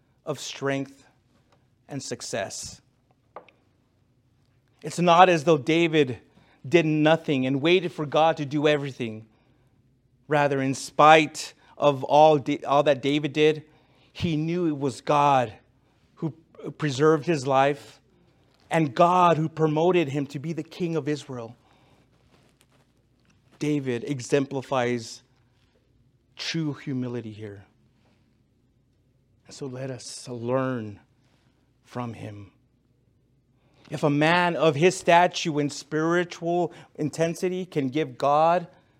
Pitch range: 125-155 Hz